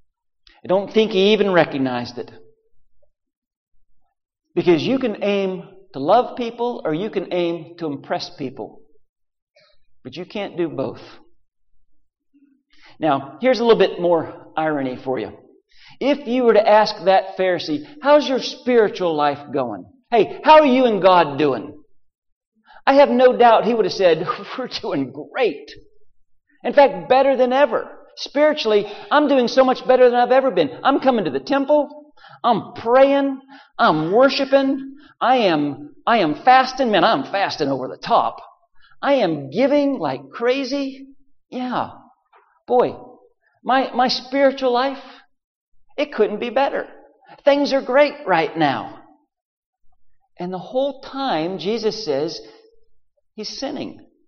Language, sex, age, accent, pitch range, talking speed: English, male, 50-69, American, 200-280 Hz, 140 wpm